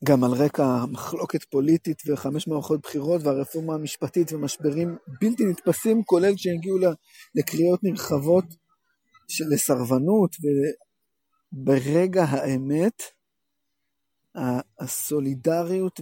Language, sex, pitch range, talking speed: Hebrew, male, 140-190 Hz, 80 wpm